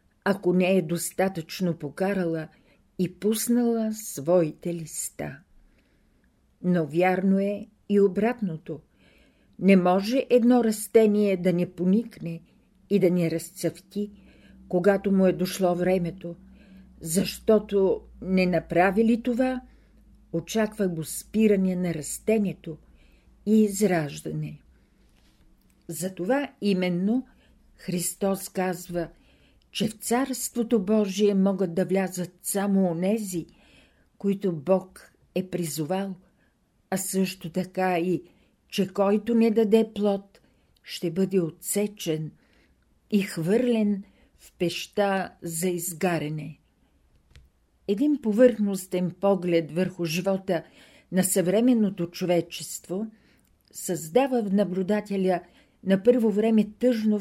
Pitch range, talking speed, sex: 175-210 Hz, 95 wpm, female